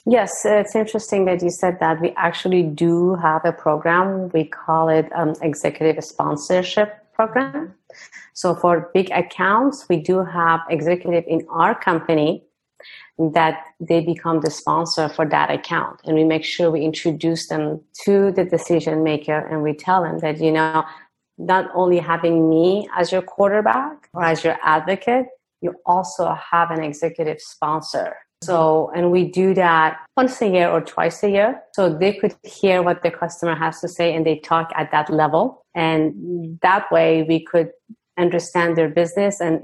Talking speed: 170 wpm